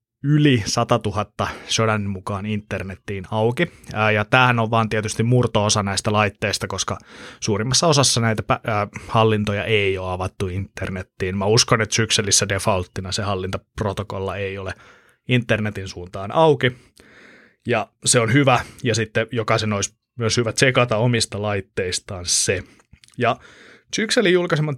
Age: 20-39